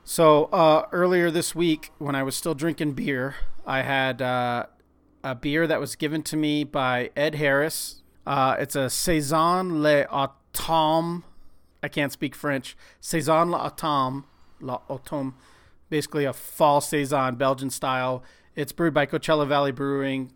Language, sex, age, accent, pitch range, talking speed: English, male, 30-49, American, 135-160 Hz, 140 wpm